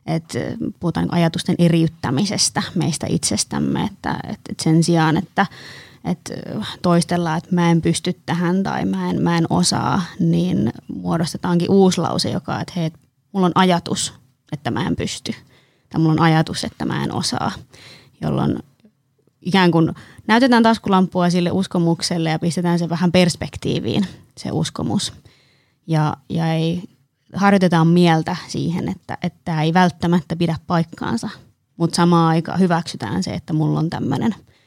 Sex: female